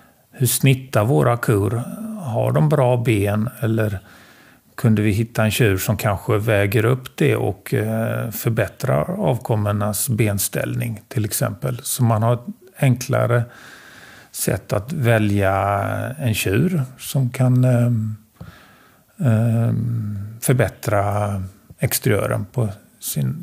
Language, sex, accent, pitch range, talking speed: Swedish, male, native, 105-130 Hz, 105 wpm